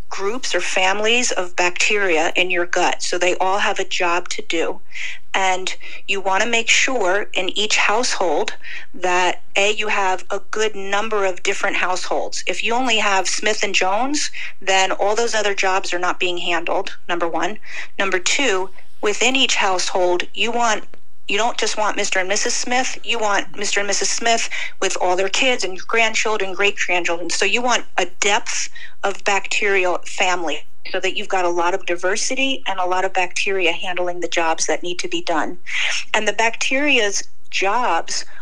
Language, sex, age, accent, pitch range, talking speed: English, female, 40-59, American, 185-220 Hz, 180 wpm